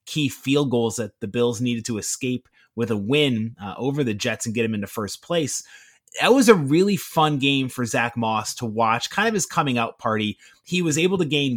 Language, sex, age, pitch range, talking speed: English, male, 30-49, 120-160 Hz, 230 wpm